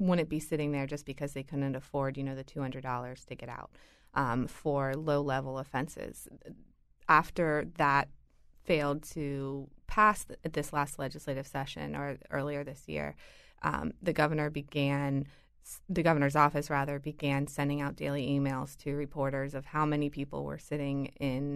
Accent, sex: American, female